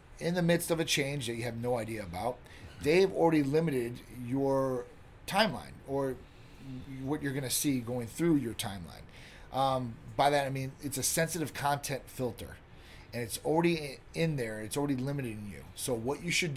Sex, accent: male, American